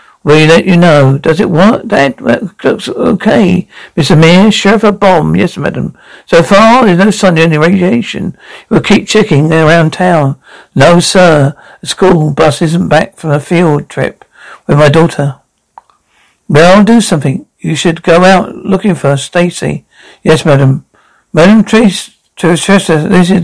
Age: 60-79